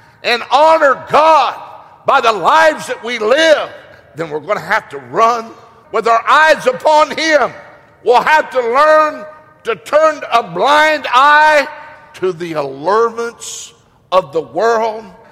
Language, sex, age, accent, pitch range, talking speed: English, male, 60-79, American, 215-290 Hz, 140 wpm